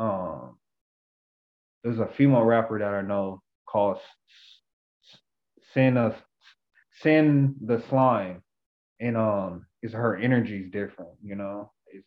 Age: 20-39